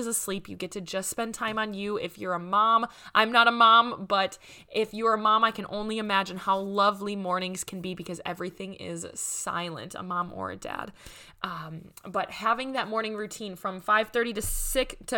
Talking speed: 200 wpm